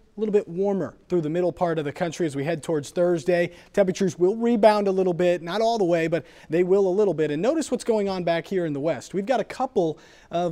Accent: American